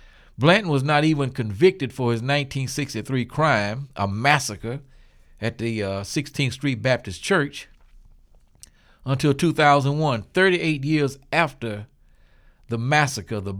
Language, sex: English, male